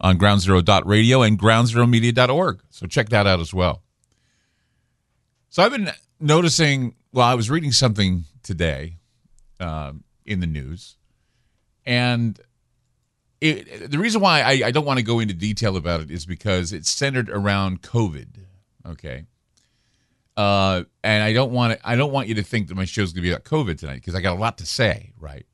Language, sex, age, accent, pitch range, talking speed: English, male, 40-59, American, 95-125 Hz, 175 wpm